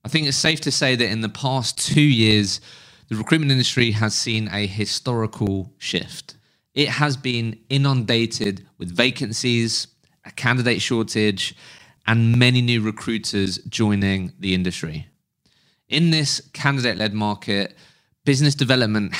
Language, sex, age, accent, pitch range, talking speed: English, male, 20-39, British, 110-140 Hz, 130 wpm